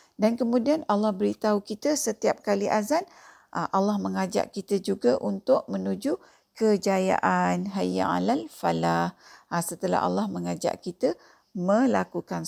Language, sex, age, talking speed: Malay, female, 50-69, 105 wpm